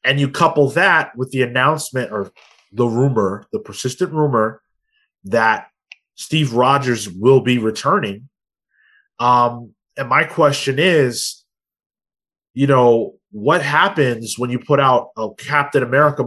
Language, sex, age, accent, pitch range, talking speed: English, male, 20-39, American, 120-155 Hz, 130 wpm